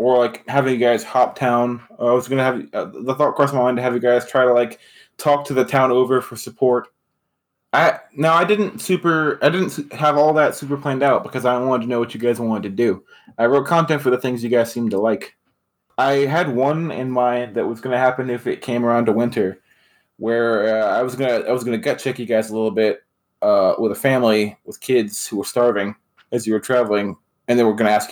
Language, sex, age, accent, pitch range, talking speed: English, male, 20-39, American, 110-130 Hz, 250 wpm